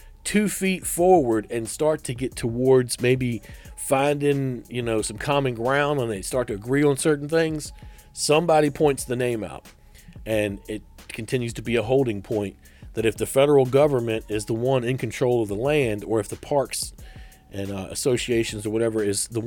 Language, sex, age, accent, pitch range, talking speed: English, male, 40-59, American, 105-135 Hz, 185 wpm